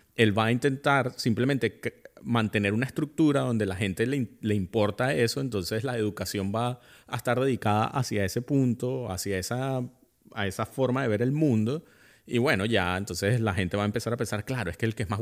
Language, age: Spanish, 30-49